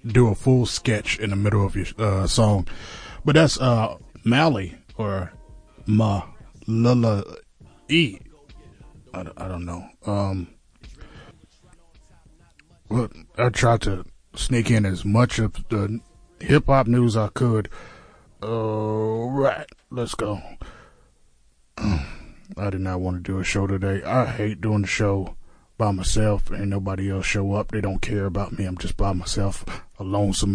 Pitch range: 95-110 Hz